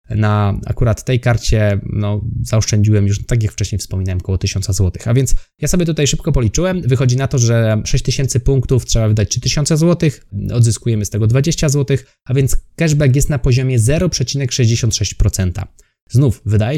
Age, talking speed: 20-39, 155 wpm